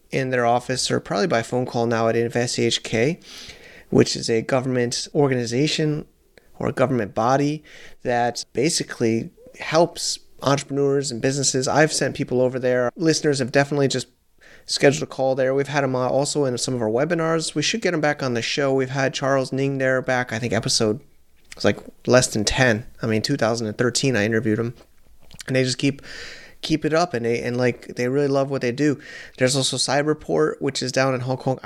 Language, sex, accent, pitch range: English, male, American, 120-145 Hz